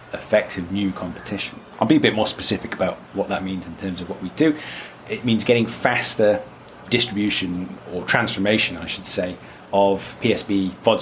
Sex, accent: male, British